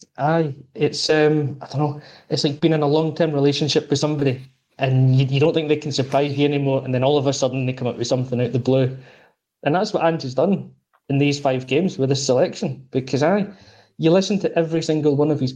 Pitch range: 130-150 Hz